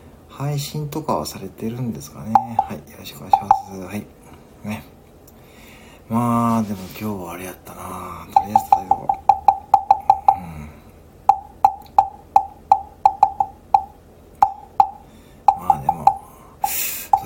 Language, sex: Japanese, male